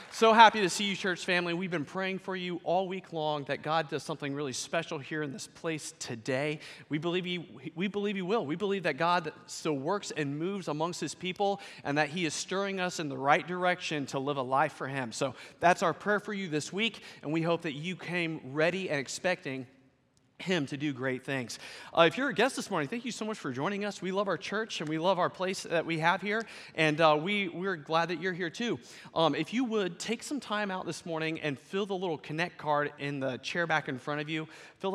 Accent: American